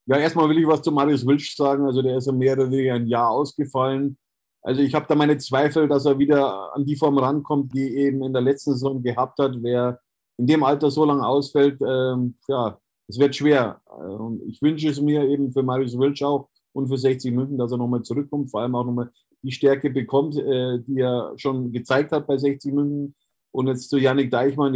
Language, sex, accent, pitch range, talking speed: German, male, German, 130-145 Hz, 225 wpm